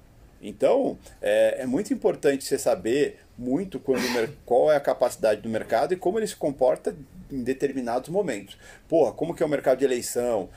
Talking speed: 175 wpm